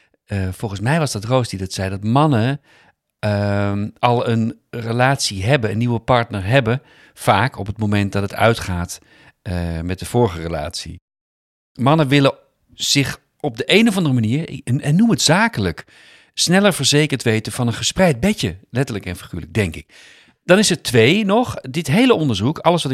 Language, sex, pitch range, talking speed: Dutch, male, 100-140 Hz, 180 wpm